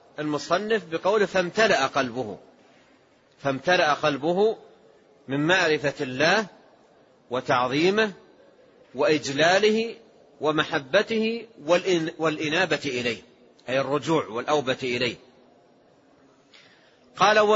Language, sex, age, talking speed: Arabic, male, 40-59, 65 wpm